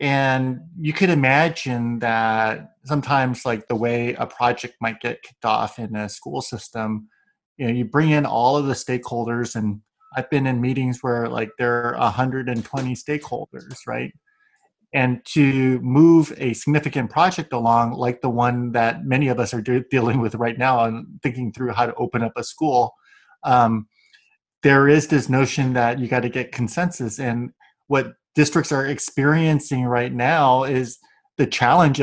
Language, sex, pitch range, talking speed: English, male, 120-150 Hz, 165 wpm